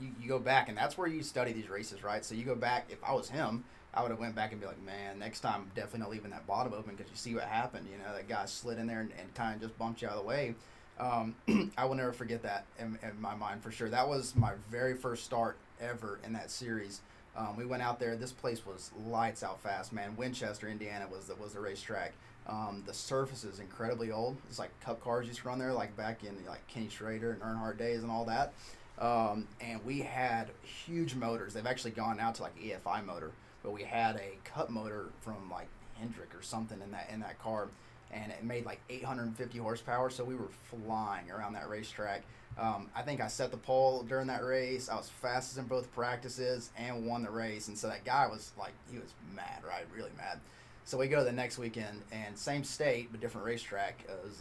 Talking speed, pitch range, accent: 240 wpm, 110-125 Hz, American